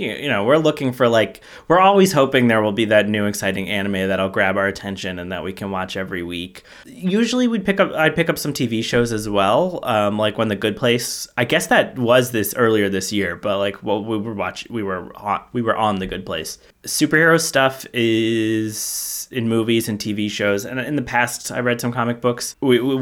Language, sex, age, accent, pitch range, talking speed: English, male, 20-39, American, 100-130 Hz, 225 wpm